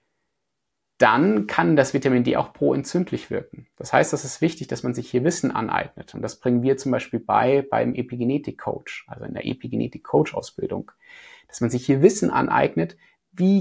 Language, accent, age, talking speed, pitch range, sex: German, German, 30-49, 170 wpm, 120-160 Hz, male